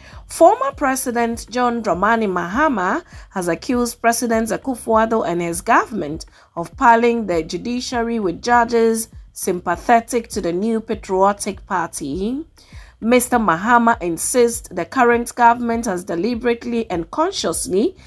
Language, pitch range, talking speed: English, 185-240 Hz, 115 wpm